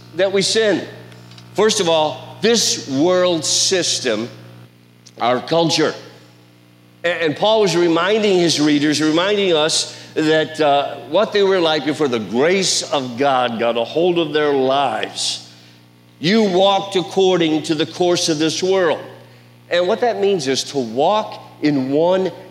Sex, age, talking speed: male, 50-69, 145 wpm